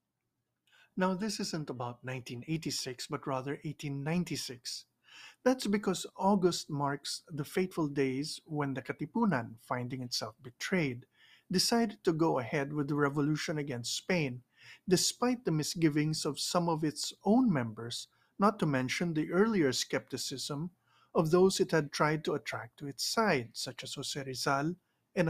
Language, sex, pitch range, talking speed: English, male, 135-185 Hz, 140 wpm